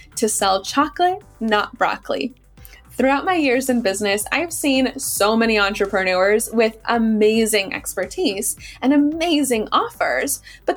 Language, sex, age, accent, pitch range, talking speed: English, female, 10-29, American, 215-285 Hz, 125 wpm